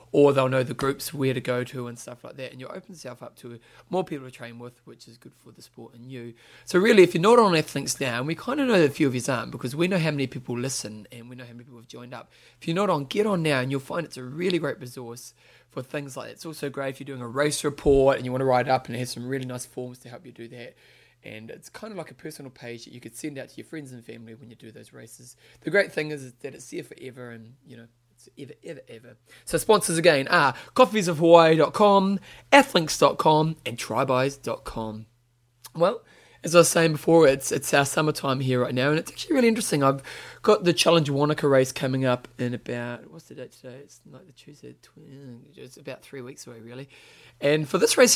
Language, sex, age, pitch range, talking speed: English, male, 20-39, 125-160 Hz, 255 wpm